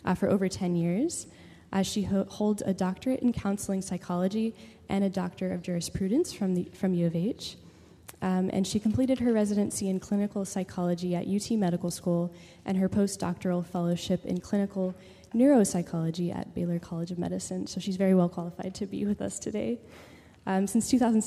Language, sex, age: English, female, 10-29